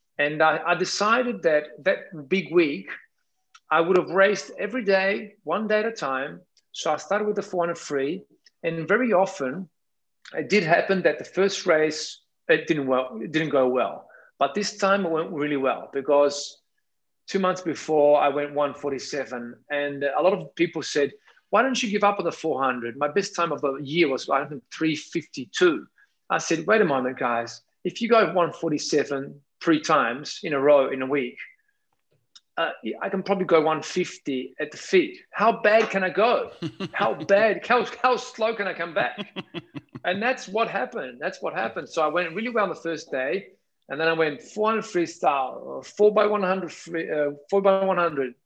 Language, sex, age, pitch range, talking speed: English, male, 40-59, 145-200 Hz, 180 wpm